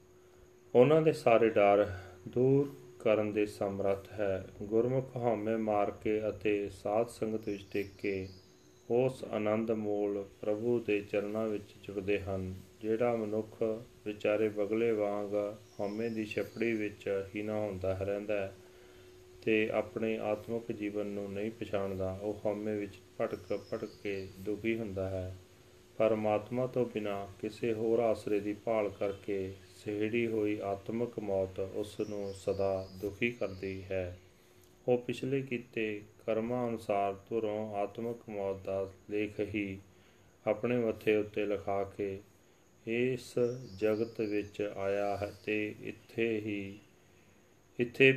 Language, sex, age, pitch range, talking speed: Punjabi, male, 30-49, 100-115 Hz, 120 wpm